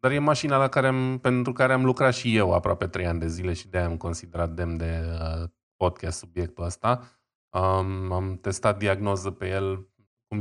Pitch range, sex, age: 90-110 Hz, male, 20-39